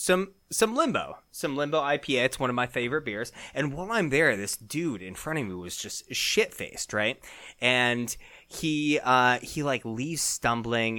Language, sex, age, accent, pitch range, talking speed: English, male, 30-49, American, 120-155 Hz, 180 wpm